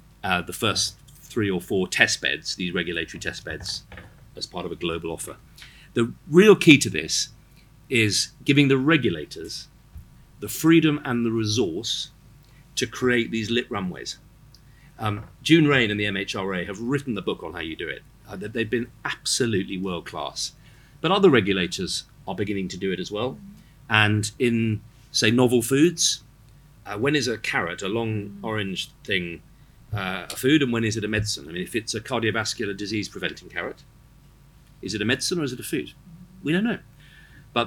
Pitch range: 105-140 Hz